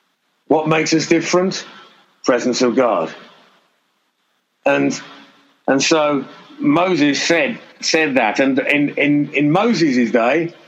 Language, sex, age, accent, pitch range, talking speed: English, male, 50-69, British, 125-160 Hz, 110 wpm